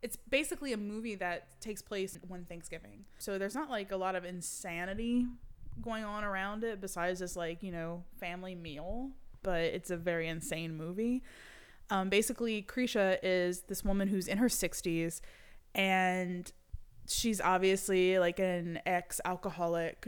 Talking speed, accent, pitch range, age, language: 150 wpm, American, 175-205 Hz, 20-39, English